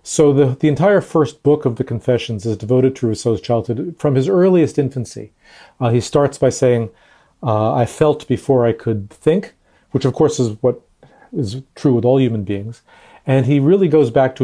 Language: English